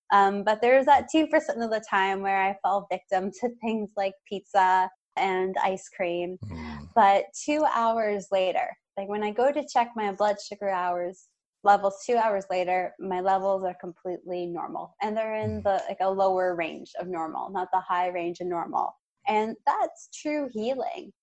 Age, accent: 20-39, American